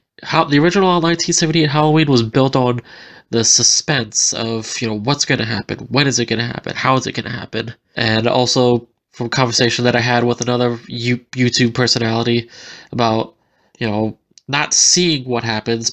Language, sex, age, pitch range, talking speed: English, male, 20-39, 115-140 Hz, 190 wpm